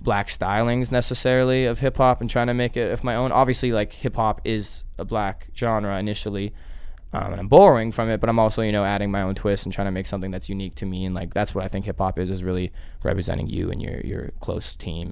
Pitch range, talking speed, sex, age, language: 85-120 Hz, 245 wpm, male, 20-39, English